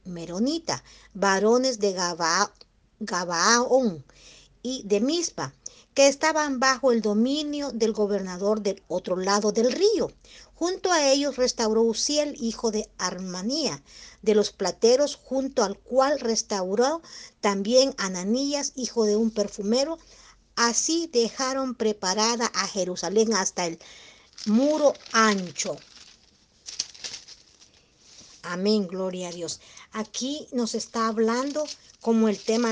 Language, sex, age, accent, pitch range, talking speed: Spanish, female, 50-69, American, 205-275 Hz, 110 wpm